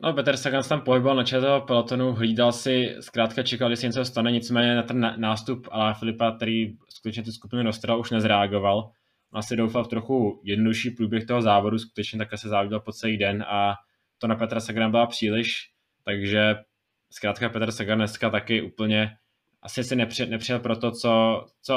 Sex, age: male, 20-39